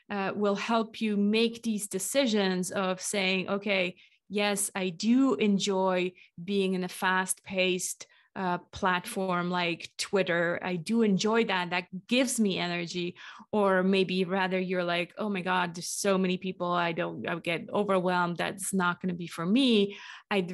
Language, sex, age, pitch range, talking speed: English, female, 20-39, 180-210 Hz, 155 wpm